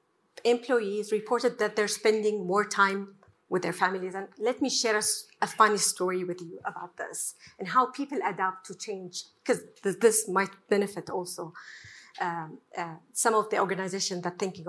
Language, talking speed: English, 170 wpm